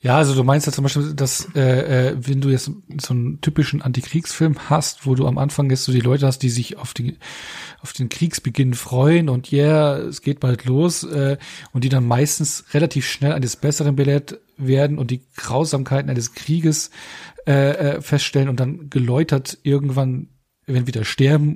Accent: German